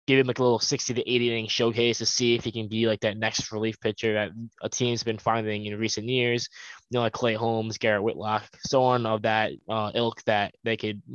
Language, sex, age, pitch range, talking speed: English, male, 10-29, 110-130 Hz, 240 wpm